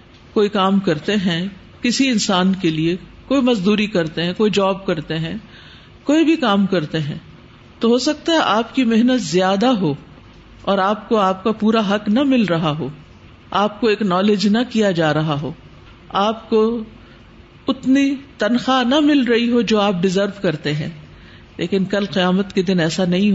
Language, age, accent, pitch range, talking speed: English, 50-69, Indian, 170-230 Hz, 165 wpm